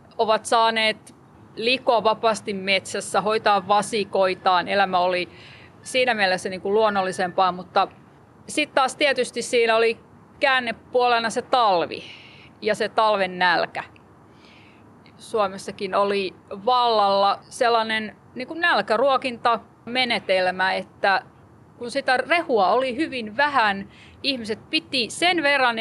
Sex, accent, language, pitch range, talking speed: female, native, Finnish, 200-265 Hz, 100 wpm